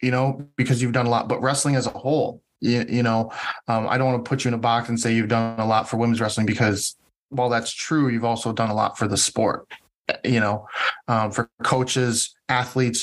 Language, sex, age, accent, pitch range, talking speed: English, male, 20-39, American, 110-130 Hz, 240 wpm